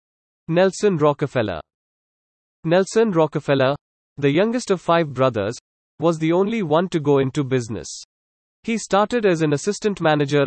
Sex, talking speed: male, 130 wpm